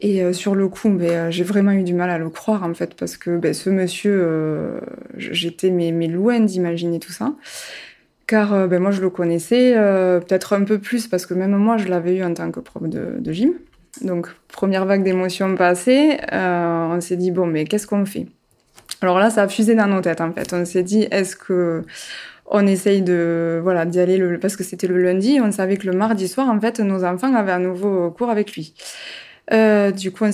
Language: French